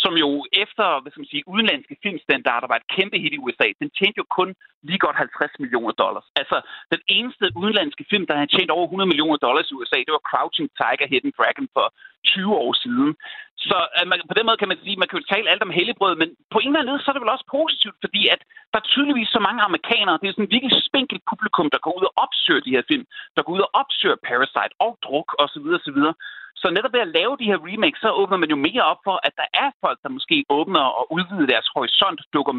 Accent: native